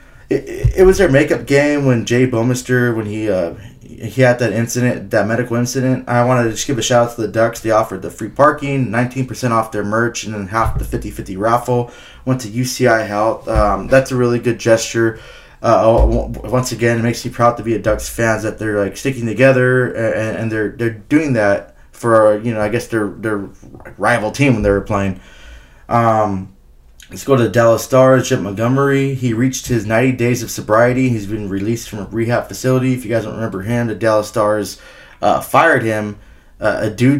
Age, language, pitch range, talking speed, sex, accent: 20-39, English, 105-125 Hz, 210 wpm, male, American